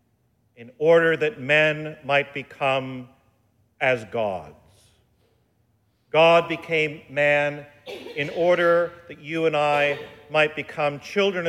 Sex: male